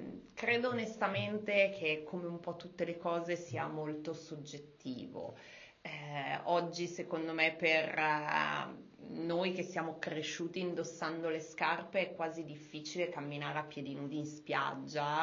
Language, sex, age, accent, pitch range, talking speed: Italian, female, 30-49, native, 150-175 Hz, 130 wpm